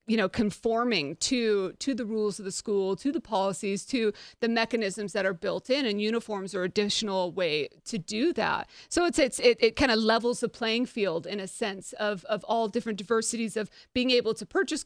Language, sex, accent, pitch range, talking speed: English, female, American, 210-255 Hz, 210 wpm